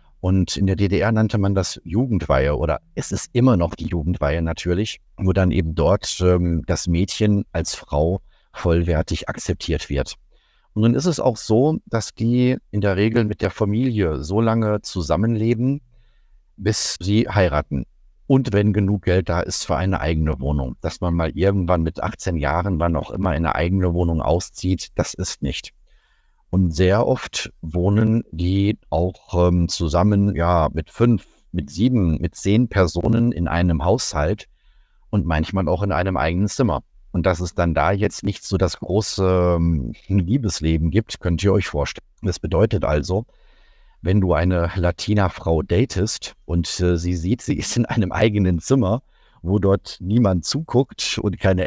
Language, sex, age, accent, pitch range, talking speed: German, male, 50-69, German, 85-110 Hz, 165 wpm